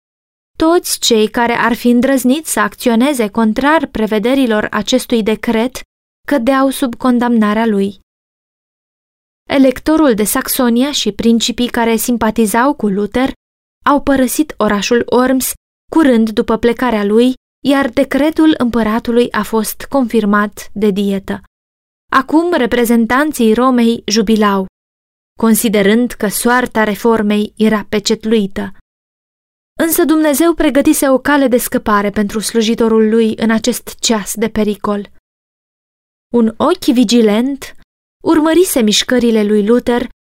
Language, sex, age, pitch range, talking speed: Romanian, female, 20-39, 215-260 Hz, 110 wpm